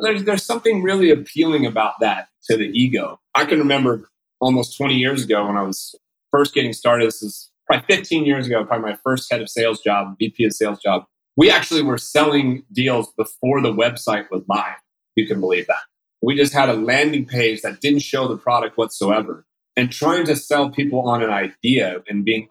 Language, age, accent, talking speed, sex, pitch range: English, 30-49, American, 205 wpm, male, 110-145 Hz